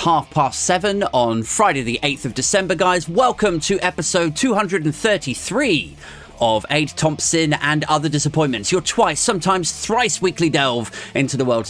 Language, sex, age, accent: English, male, 30-49, British